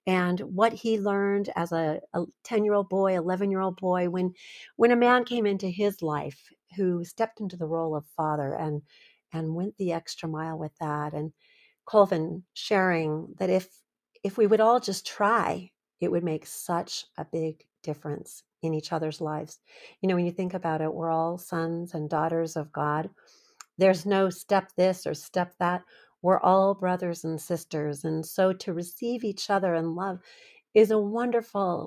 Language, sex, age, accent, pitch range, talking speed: English, female, 40-59, American, 160-195 Hz, 175 wpm